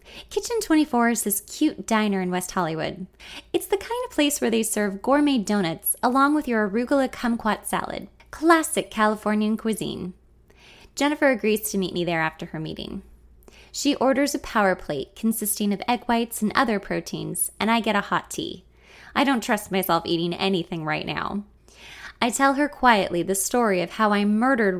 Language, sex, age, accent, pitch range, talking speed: English, female, 20-39, American, 190-280 Hz, 175 wpm